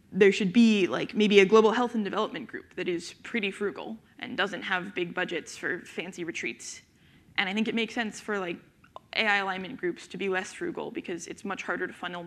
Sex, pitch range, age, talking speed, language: female, 185-220 Hz, 20-39, 215 wpm, English